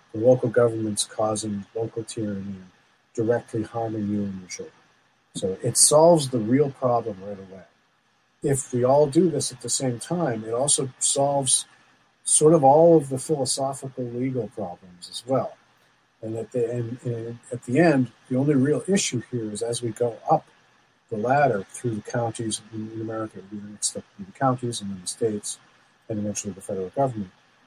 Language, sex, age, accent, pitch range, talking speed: English, male, 40-59, American, 105-130 Hz, 170 wpm